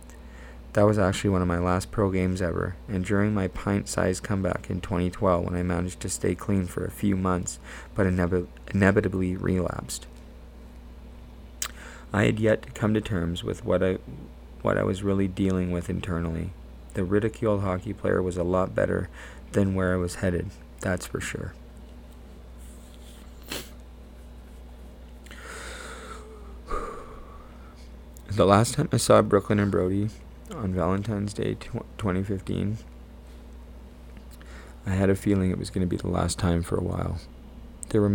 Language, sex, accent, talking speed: English, male, American, 145 wpm